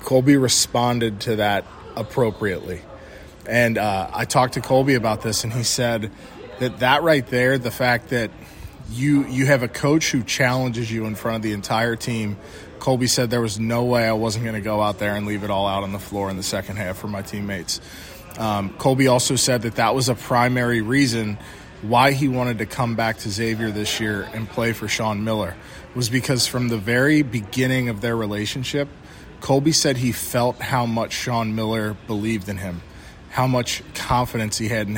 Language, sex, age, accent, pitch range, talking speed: English, male, 20-39, American, 105-125 Hz, 200 wpm